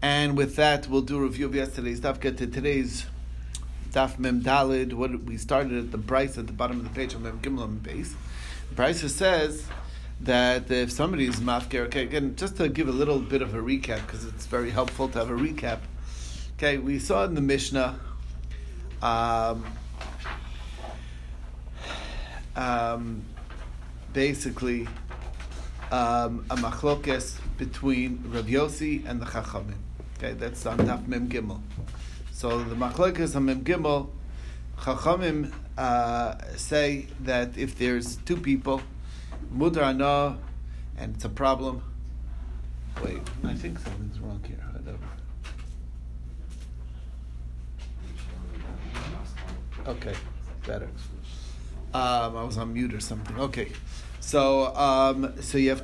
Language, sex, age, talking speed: English, male, 40-59, 130 wpm